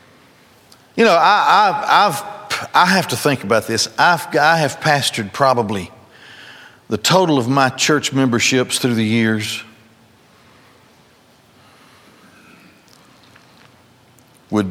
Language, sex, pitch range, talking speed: English, male, 115-135 Hz, 105 wpm